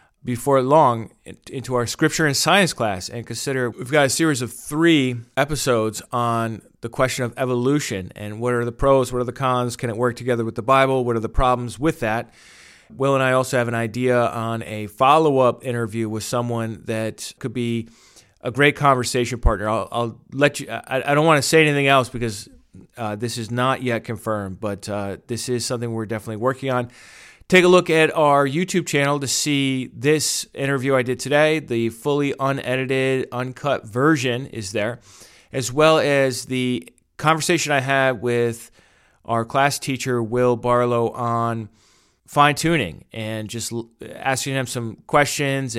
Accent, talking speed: American, 175 wpm